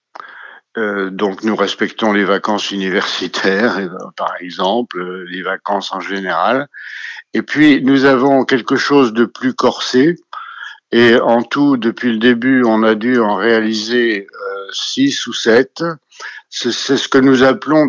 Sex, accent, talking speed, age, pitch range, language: male, French, 140 wpm, 60-79, 105-130 Hz, French